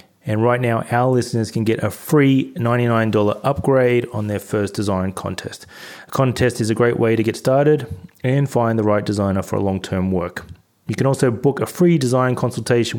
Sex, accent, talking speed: male, Australian, 195 wpm